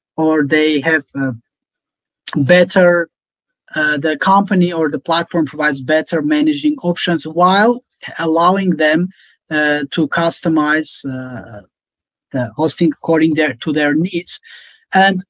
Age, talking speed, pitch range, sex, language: 30-49, 120 wpm, 150-185 Hz, male, English